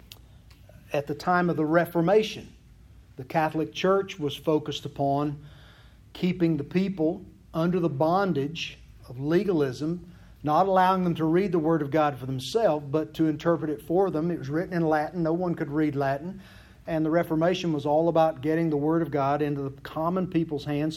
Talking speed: 180 wpm